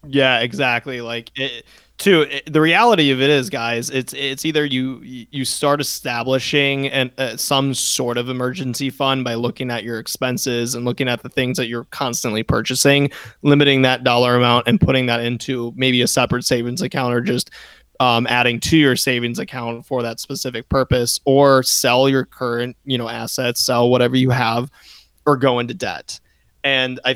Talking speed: 180 wpm